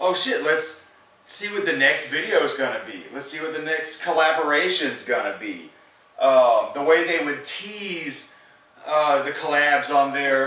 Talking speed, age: 185 wpm, 30-49